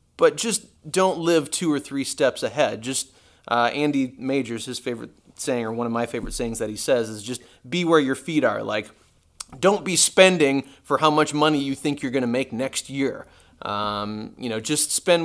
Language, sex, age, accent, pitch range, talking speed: English, male, 30-49, American, 120-160 Hz, 210 wpm